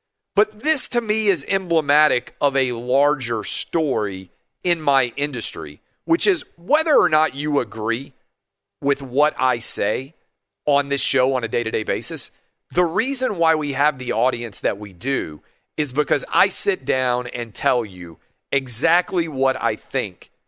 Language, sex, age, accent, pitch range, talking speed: English, male, 40-59, American, 135-205 Hz, 155 wpm